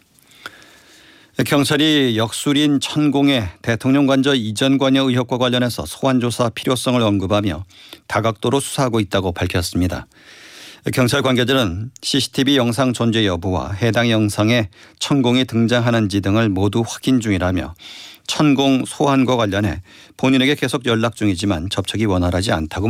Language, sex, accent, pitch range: Korean, male, native, 105-130 Hz